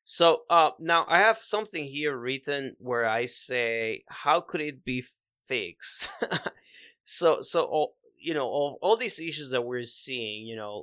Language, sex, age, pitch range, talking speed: English, male, 30-49, 110-135 Hz, 165 wpm